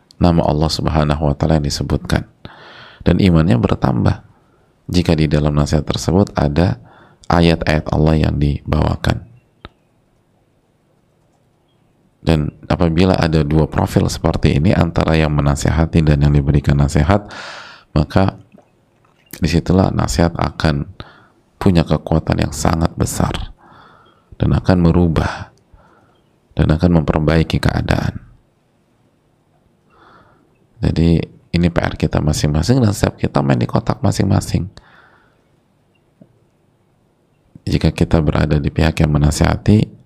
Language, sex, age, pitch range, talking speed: Indonesian, male, 30-49, 75-95 Hz, 105 wpm